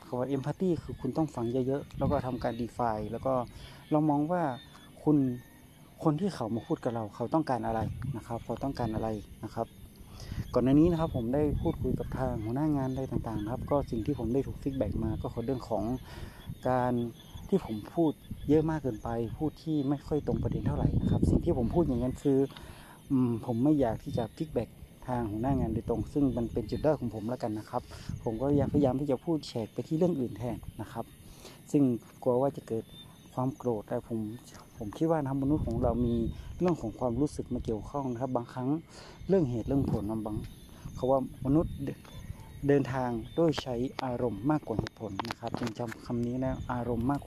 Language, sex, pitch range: Thai, male, 115-140 Hz